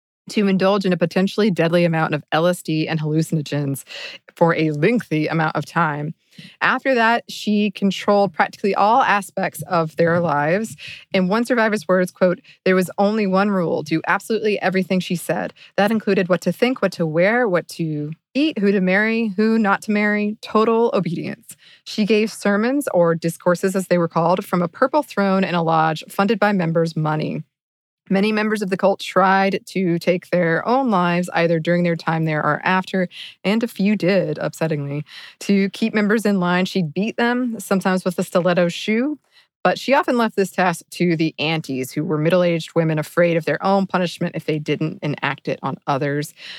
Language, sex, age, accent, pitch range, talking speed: English, female, 20-39, American, 160-200 Hz, 185 wpm